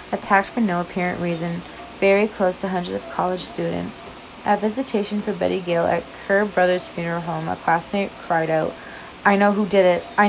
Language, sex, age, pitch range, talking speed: English, female, 20-39, 175-205 Hz, 185 wpm